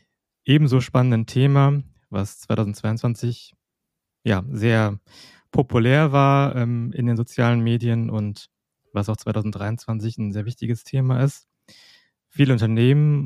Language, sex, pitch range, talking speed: German, male, 110-130 Hz, 115 wpm